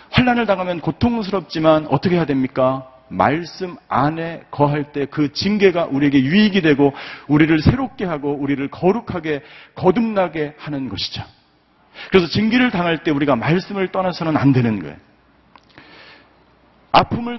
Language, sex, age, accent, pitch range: Korean, male, 40-59, native, 140-185 Hz